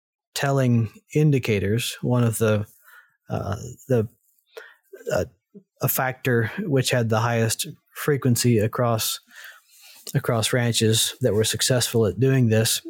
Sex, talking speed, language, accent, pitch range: male, 110 wpm, English, American, 110-130 Hz